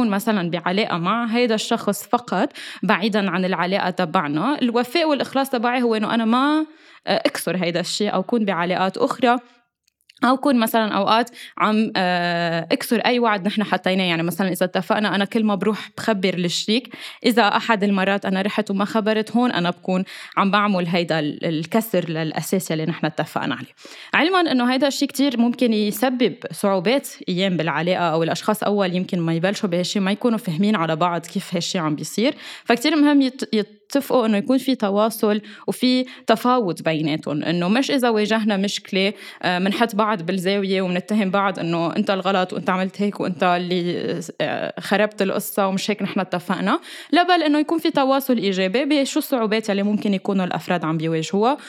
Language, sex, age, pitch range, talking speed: Arabic, female, 20-39, 180-240 Hz, 165 wpm